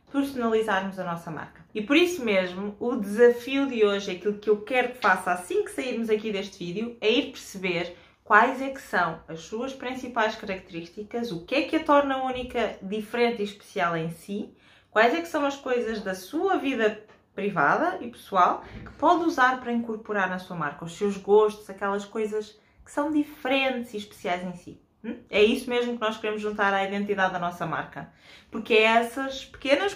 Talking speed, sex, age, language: 190 wpm, female, 20-39, Portuguese